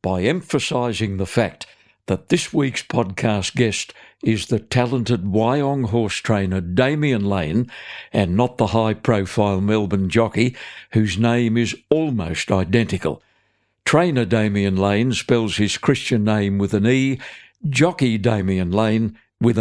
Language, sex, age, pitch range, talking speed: English, male, 60-79, 105-130 Hz, 130 wpm